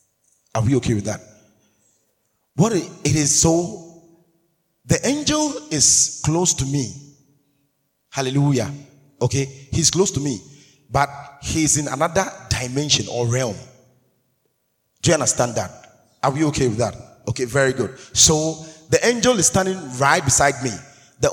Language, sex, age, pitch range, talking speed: English, male, 30-49, 125-160 Hz, 140 wpm